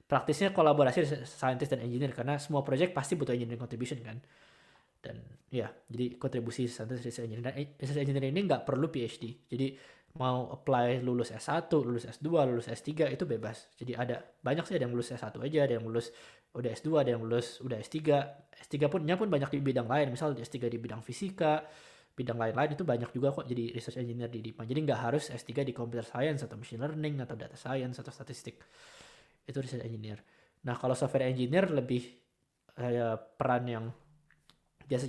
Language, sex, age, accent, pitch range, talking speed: Indonesian, male, 20-39, native, 120-145 Hz, 180 wpm